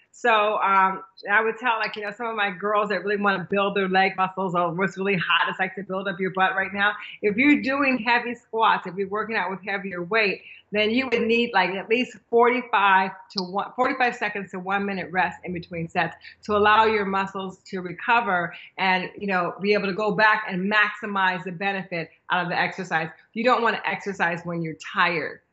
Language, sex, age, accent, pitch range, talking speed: English, female, 30-49, American, 185-220 Hz, 220 wpm